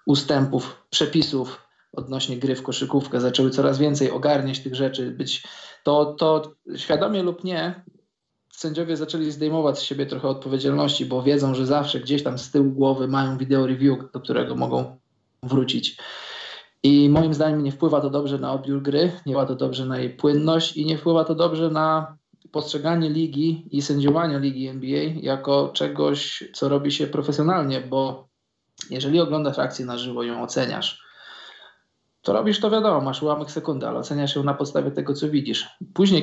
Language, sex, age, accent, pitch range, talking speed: Polish, male, 20-39, native, 130-150 Hz, 165 wpm